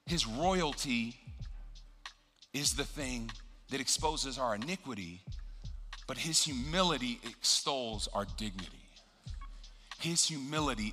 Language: English